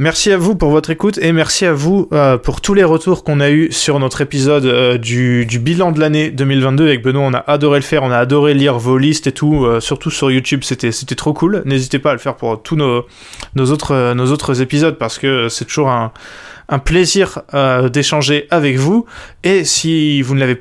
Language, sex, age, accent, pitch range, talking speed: French, male, 20-39, French, 130-160 Hz, 235 wpm